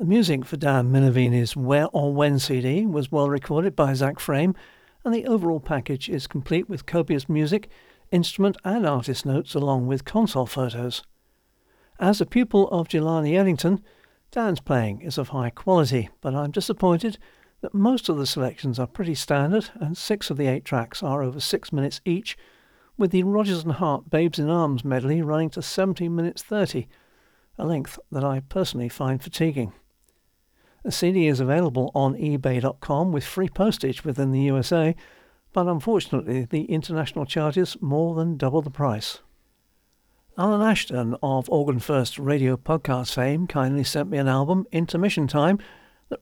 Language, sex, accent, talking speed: English, male, British, 160 wpm